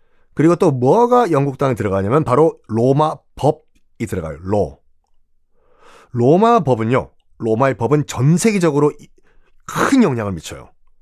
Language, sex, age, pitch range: Korean, male, 30-49, 130-200 Hz